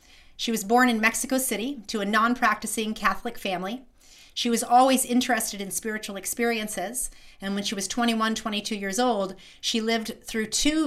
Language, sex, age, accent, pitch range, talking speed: English, female, 40-59, American, 200-240 Hz, 165 wpm